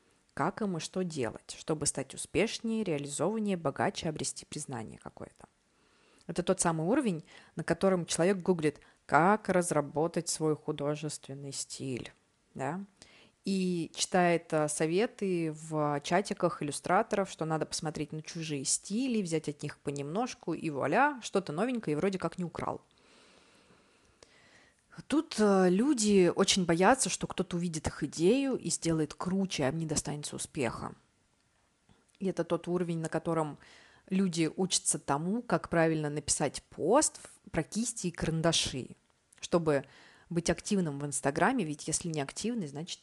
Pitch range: 155-190 Hz